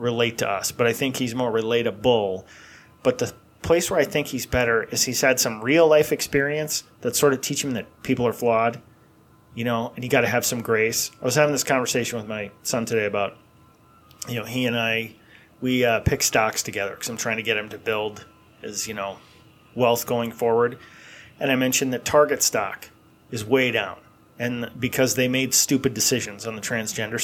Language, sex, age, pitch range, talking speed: English, male, 30-49, 115-140 Hz, 205 wpm